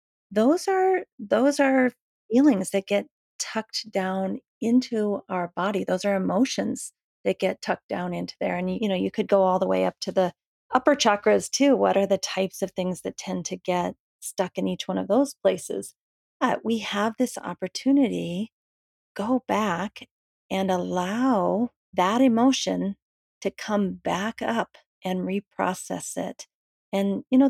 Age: 40-59